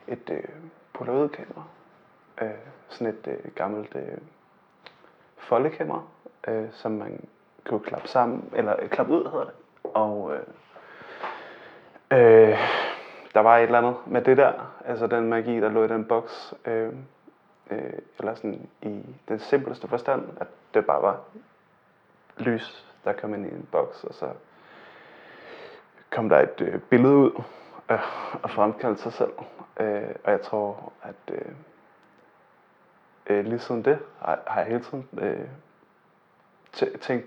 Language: Danish